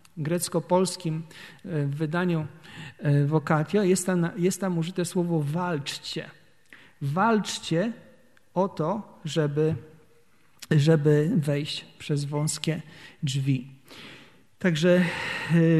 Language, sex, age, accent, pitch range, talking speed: Polish, male, 50-69, native, 150-185 Hz, 75 wpm